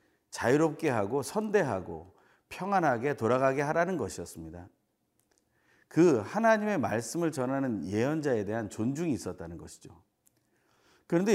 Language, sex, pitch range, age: Korean, male, 100-155 Hz, 40-59